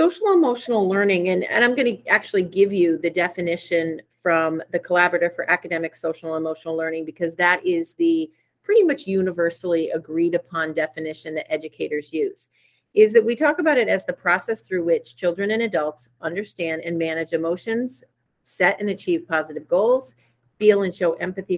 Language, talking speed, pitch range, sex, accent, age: English, 170 wpm, 160-200 Hz, female, American, 40-59